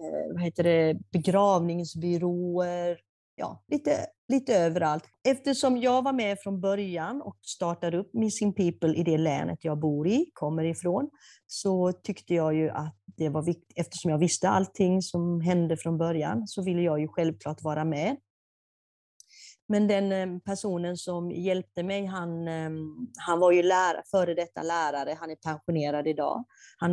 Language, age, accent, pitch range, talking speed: Swedish, 30-49, native, 165-210 Hz, 155 wpm